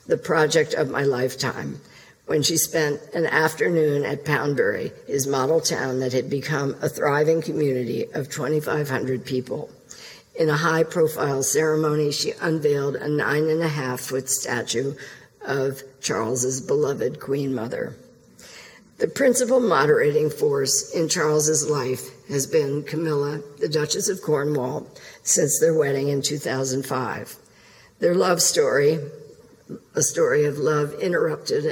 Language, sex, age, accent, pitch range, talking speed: English, female, 50-69, American, 145-175 Hz, 125 wpm